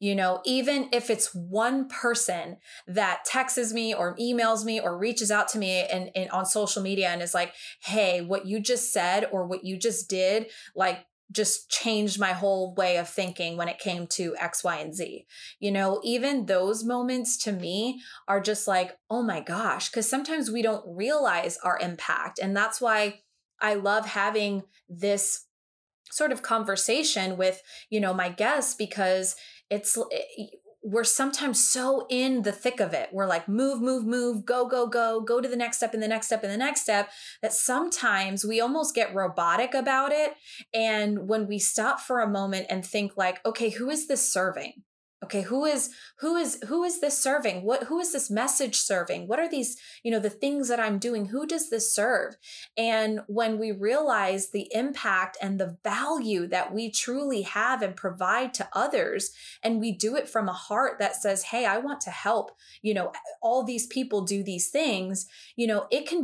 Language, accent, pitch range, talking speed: English, American, 195-250 Hz, 195 wpm